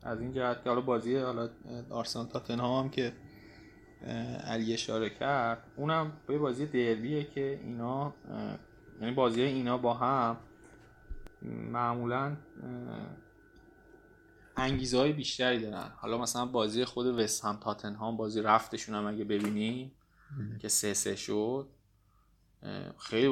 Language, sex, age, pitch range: Persian, male, 20-39, 110-125 Hz